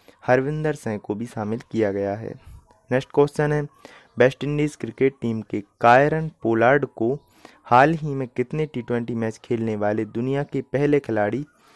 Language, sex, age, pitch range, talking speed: Hindi, male, 20-39, 110-140 Hz, 160 wpm